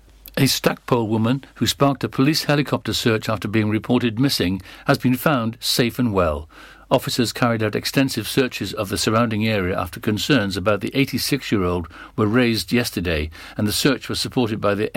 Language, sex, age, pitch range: English, male, 60-79, 105-130 Hz